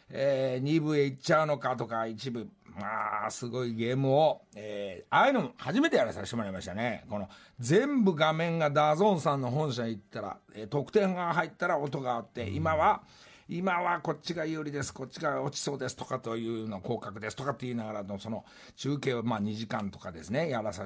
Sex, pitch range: male, 110-160 Hz